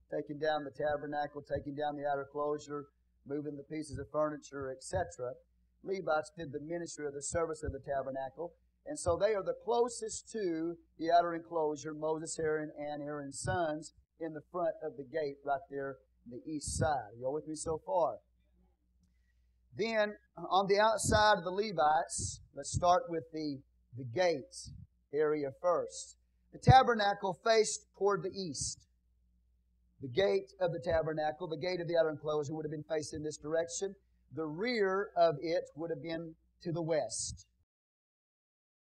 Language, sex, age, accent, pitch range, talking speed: English, male, 40-59, American, 130-170 Hz, 165 wpm